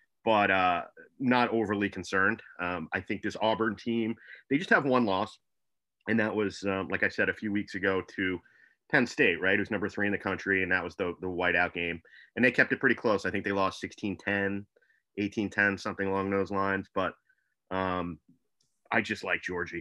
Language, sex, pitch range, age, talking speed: English, male, 95-110 Hz, 30-49, 210 wpm